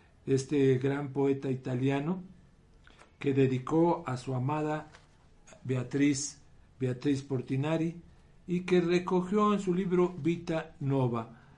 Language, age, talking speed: Spanish, 60-79, 105 wpm